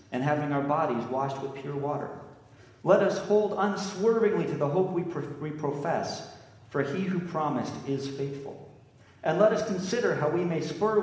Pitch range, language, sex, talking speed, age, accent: 125-180 Hz, English, male, 175 wpm, 40-59, American